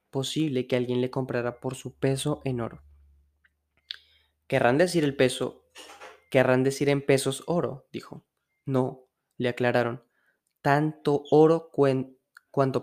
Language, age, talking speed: Spanish, 20-39, 120 wpm